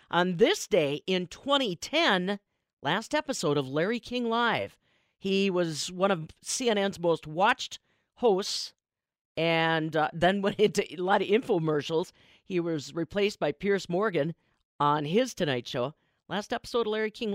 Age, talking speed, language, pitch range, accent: 50-69, 150 wpm, English, 155-225 Hz, American